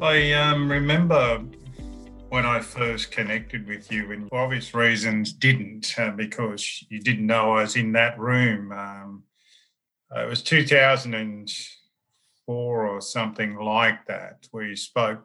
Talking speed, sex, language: 140 wpm, male, English